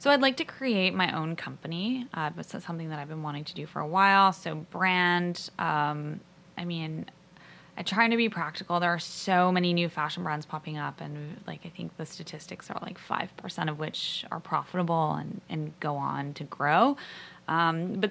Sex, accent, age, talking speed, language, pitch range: female, American, 20-39, 205 wpm, English, 160-190 Hz